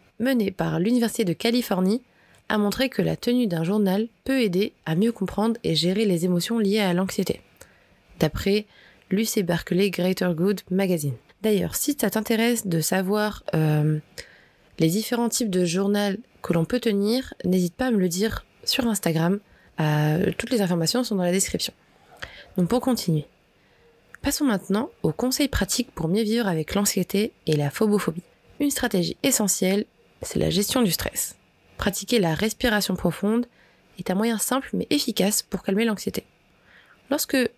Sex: female